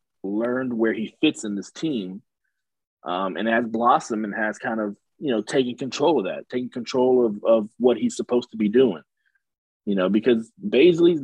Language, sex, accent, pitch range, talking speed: English, male, American, 105-140 Hz, 185 wpm